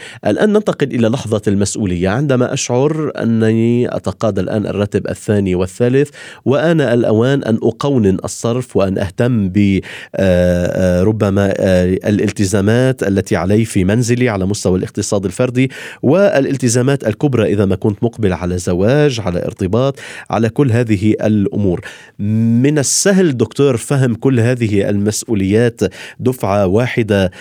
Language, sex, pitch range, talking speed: Arabic, male, 100-125 Hz, 120 wpm